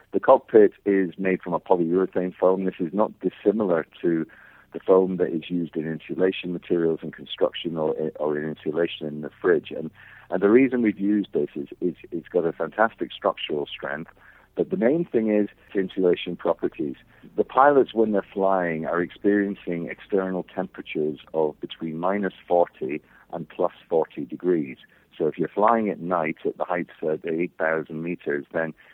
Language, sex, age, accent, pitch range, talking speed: English, male, 50-69, British, 80-100 Hz, 170 wpm